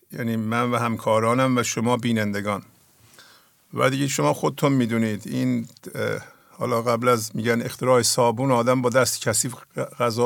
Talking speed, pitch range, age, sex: 140 wpm, 115-130 Hz, 50-69, male